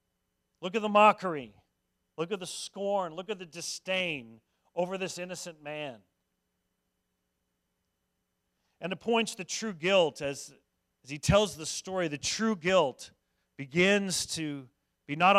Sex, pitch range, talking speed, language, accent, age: male, 105-155 Hz, 135 wpm, English, American, 40-59